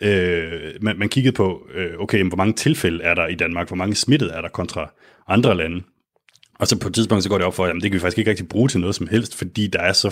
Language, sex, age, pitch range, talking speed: Danish, male, 30-49, 90-110 Hz, 295 wpm